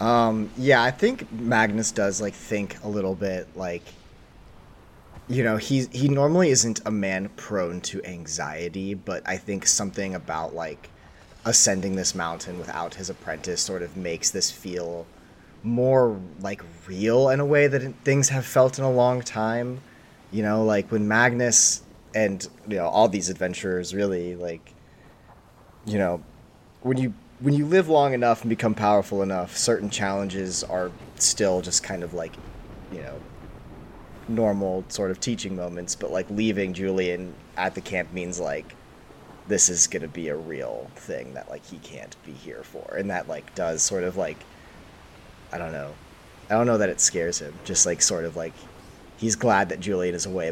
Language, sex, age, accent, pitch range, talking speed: English, male, 30-49, American, 90-115 Hz, 175 wpm